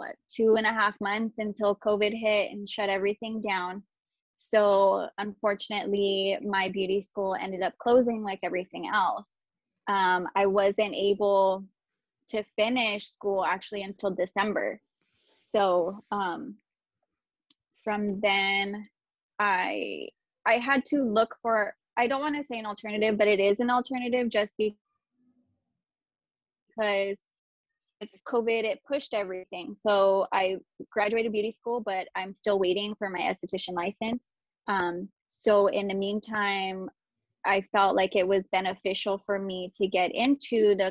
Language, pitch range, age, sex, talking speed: English, 195-220 Hz, 20-39, female, 135 wpm